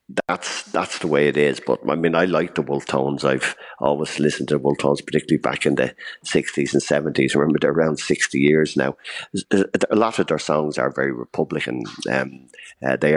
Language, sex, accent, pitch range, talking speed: English, male, Irish, 70-80 Hz, 195 wpm